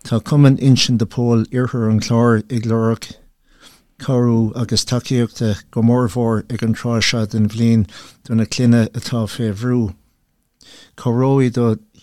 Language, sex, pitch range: English, male, 115-125 Hz